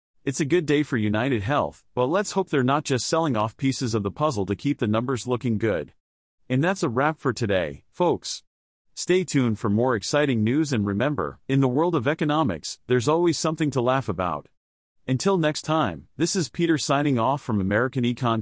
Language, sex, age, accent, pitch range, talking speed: English, male, 40-59, American, 110-155 Hz, 200 wpm